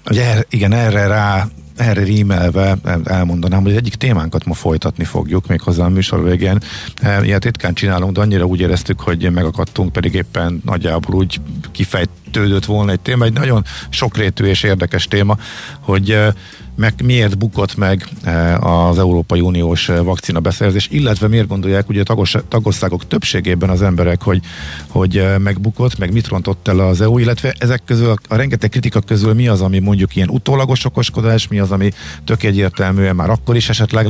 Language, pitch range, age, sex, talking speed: Hungarian, 90-110 Hz, 50-69, male, 165 wpm